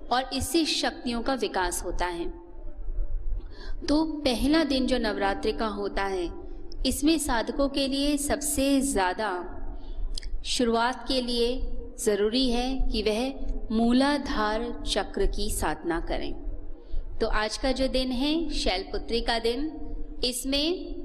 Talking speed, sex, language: 125 wpm, female, Hindi